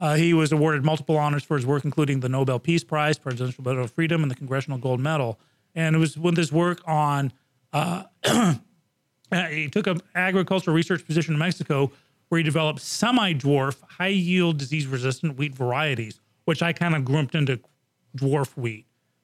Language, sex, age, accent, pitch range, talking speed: English, male, 40-59, American, 135-165 Hz, 170 wpm